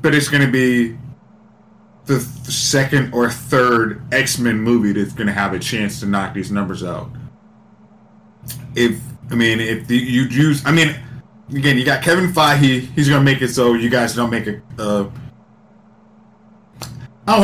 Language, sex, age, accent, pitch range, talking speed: English, male, 20-39, American, 120-145 Hz, 175 wpm